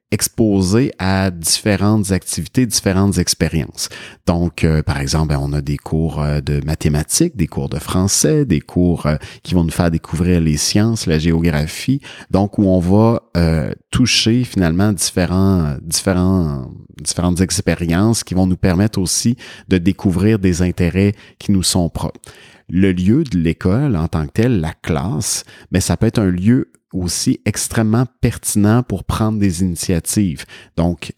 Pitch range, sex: 85-105 Hz, male